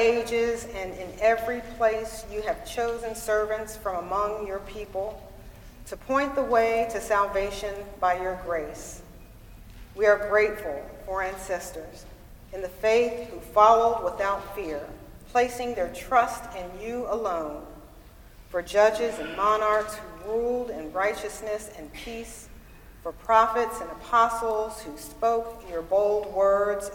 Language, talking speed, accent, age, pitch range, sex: English, 130 wpm, American, 40-59, 185-230 Hz, female